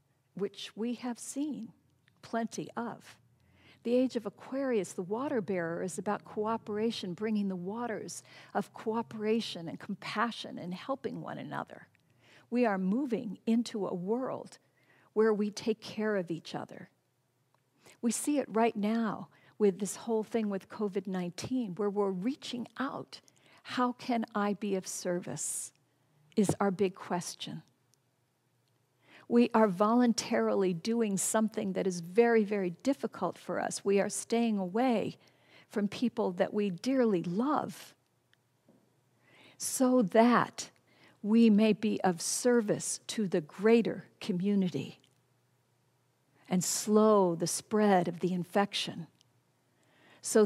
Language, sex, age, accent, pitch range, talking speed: English, female, 50-69, American, 175-225 Hz, 125 wpm